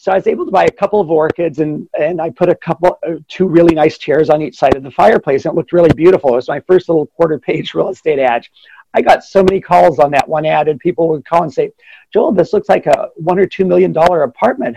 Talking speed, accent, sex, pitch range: 275 wpm, American, male, 140-190 Hz